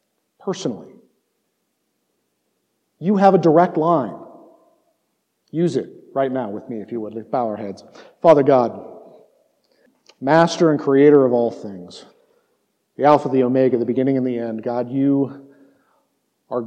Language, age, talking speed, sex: English, 50-69, 135 wpm, male